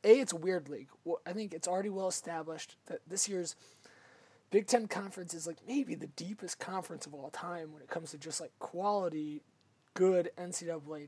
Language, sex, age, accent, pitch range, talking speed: English, male, 20-39, American, 165-210 Hz, 190 wpm